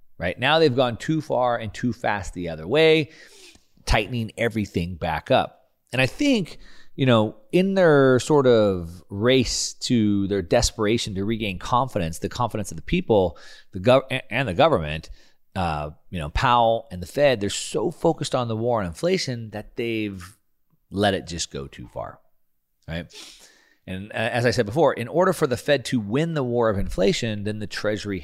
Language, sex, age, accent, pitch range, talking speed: English, male, 30-49, American, 95-130 Hz, 175 wpm